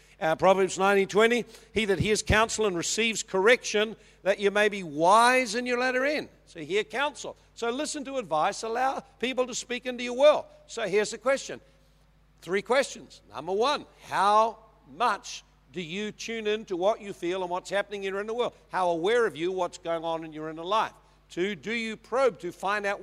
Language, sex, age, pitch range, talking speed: English, male, 50-69, 165-230 Hz, 200 wpm